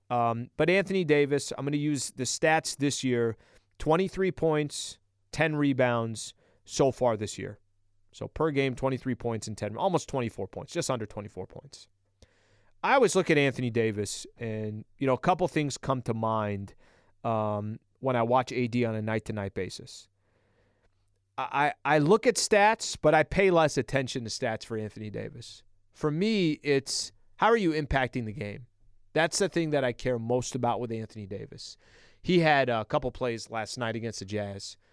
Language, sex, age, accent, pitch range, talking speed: English, male, 30-49, American, 105-140 Hz, 175 wpm